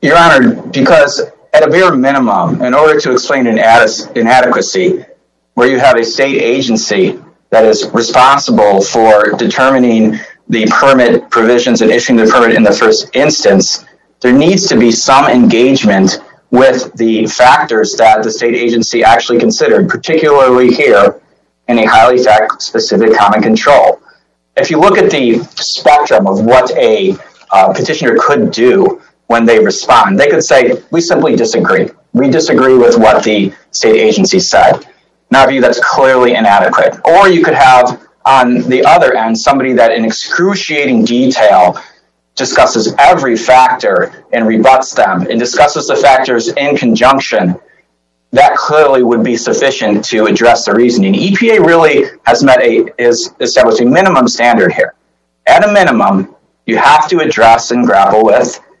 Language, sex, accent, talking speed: English, male, American, 150 wpm